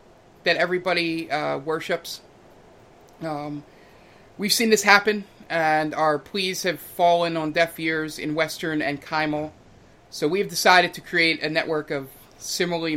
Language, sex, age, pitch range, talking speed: English, male, 30-49, 140-170 Hz, 140 wpm